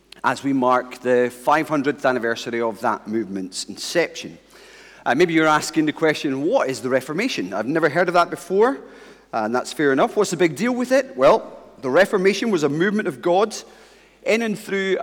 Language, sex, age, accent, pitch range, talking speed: English, male, 40-59, British, 140-220 Hz, 190 wpm